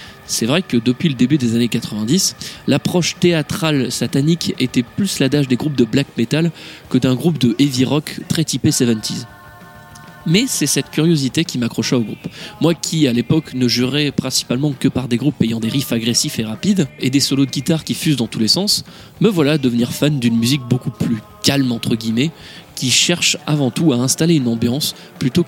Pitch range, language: 120-155 Hz, French